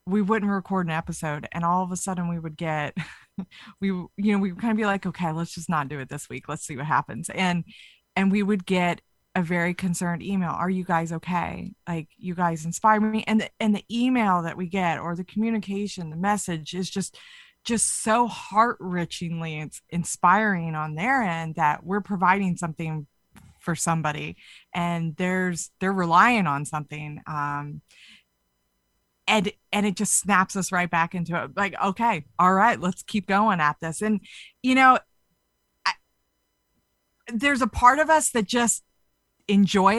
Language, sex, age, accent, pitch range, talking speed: English, female, 20-39, American, 170-205 Hz, 175 wpm